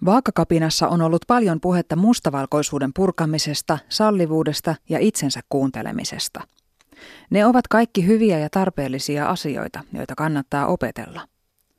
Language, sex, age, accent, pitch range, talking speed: Finnish, female, 30-49, native, 150-205 Hz, 105 wpm